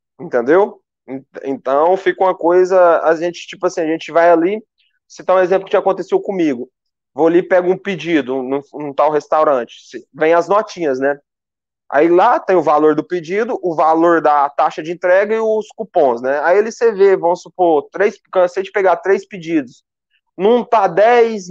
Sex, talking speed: male, 180 wpm